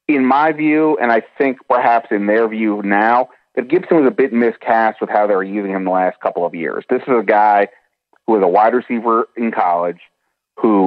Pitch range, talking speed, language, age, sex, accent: 105-125 Hz, 220 wpm, English, 30-49, male, American